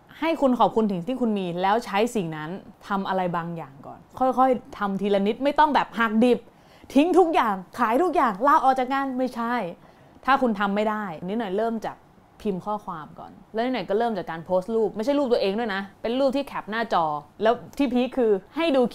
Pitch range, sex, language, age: 175-245 Hz, female, Thai, 20-39